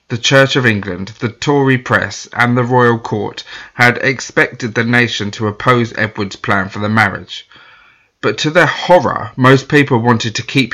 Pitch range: 105-125 Hz